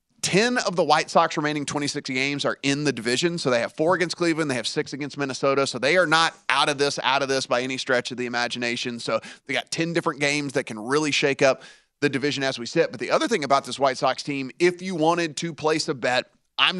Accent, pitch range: American, 135-165 Hz